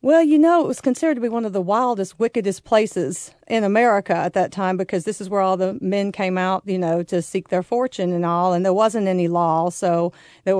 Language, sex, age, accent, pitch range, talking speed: English, female, 40-59, American, 180-220 Hz, 245 wpm